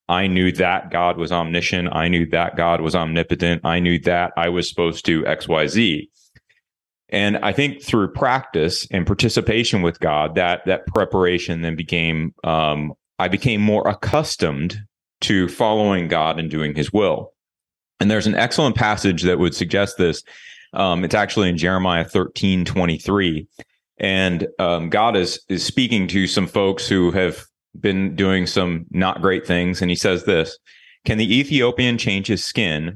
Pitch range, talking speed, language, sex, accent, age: 85-105 Hz, 165 wpm, English, male, American, 30-49